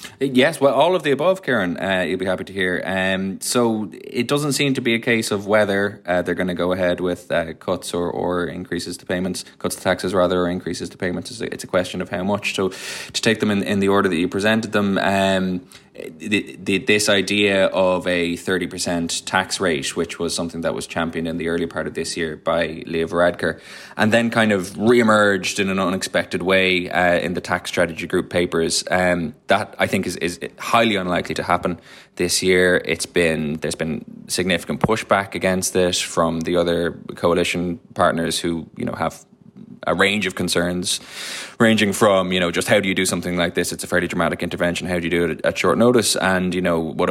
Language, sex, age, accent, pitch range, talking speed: English, male, 20-39, Irish, 85-100 Hz, 220 wpm